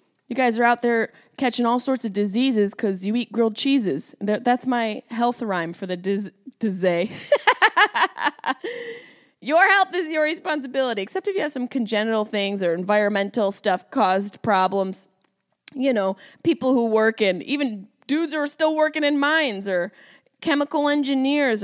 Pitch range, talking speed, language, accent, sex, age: 210-300 Hz, 155 wpm, English, American, female, 20-39